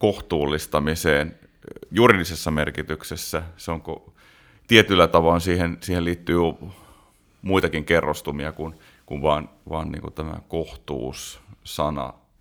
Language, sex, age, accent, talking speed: Finnish, male, 30-49, native, 80 wpm